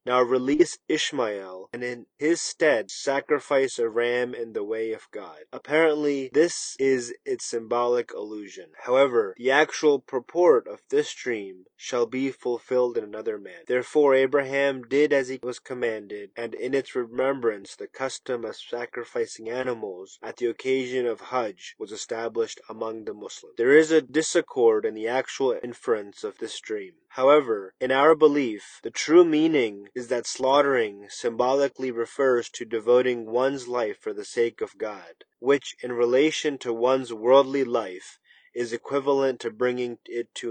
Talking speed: 155 wpm